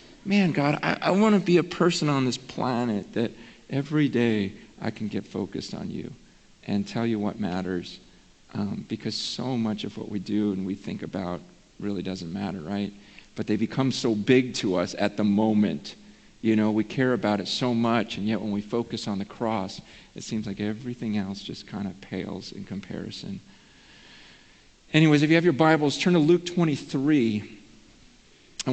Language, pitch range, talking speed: English, 115-175 Hz, 185 wpm